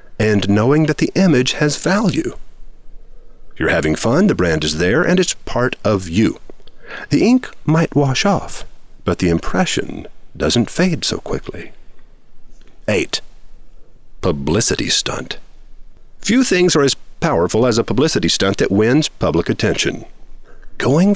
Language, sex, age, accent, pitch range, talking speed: English, male, 50-69, American, 95-155 Hz, 135 wpm